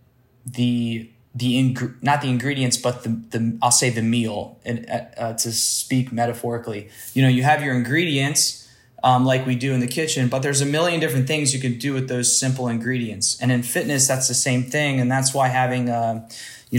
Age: 20-39